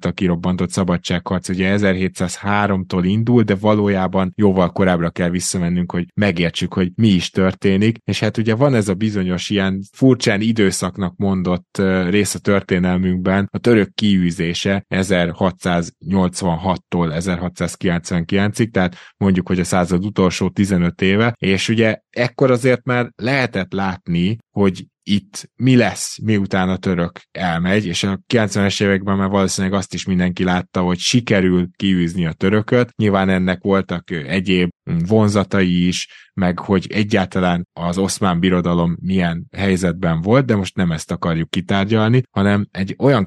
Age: 20-39